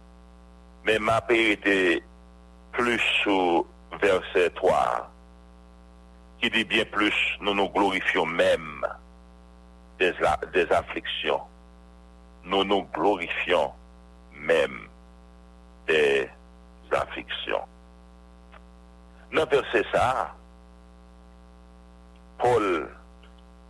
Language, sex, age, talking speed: English, male, 60-79, 70 wpm